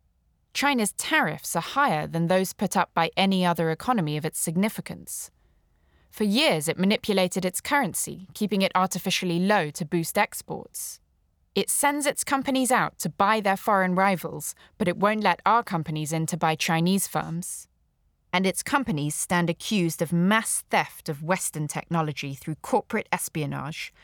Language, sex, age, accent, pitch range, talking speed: English, female, 20-39, British, 155-205 Hz, 155 wpm